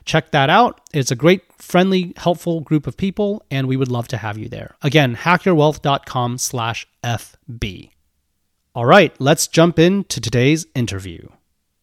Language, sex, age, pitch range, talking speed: English, male, 30-49, 110-145 Hz, 150 wpm